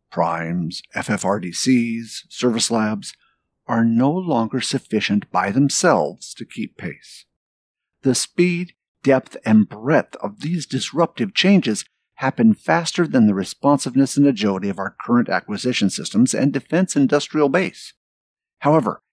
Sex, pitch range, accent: male, 120-165 Hz, American